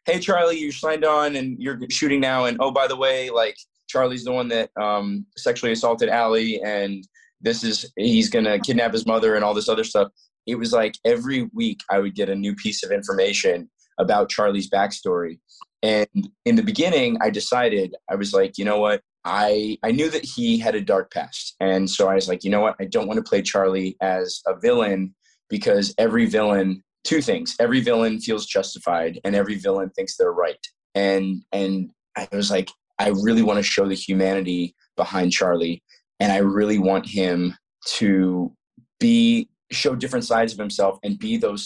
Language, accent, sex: English, American, male